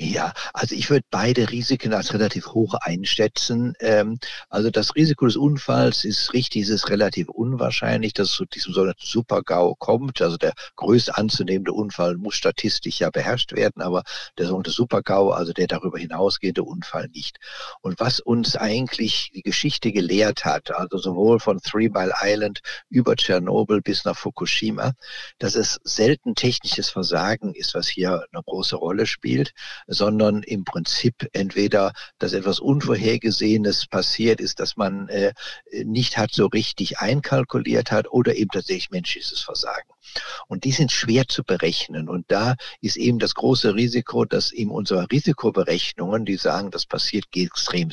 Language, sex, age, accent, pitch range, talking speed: German, male, 60-79, German, 100-125 Hz, 155 wpm